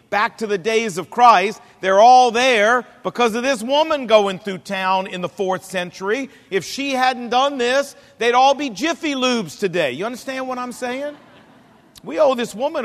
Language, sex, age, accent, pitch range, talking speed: English, male, 50-69, American, 205-260 Hz, 185 wpm